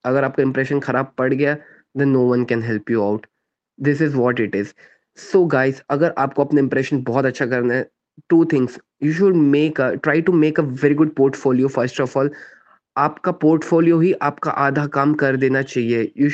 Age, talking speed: 20-39, 195 wpm